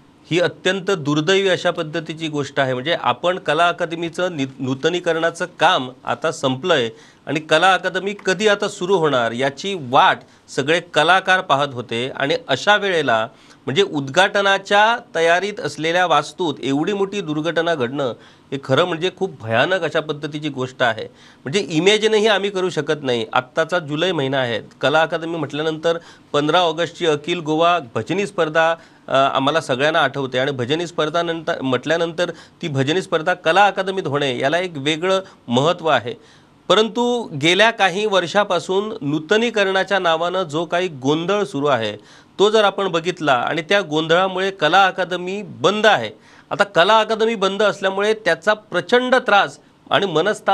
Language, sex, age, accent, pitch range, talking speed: English, male, 40-59, Indian, 150-190 Hz, 105 wpm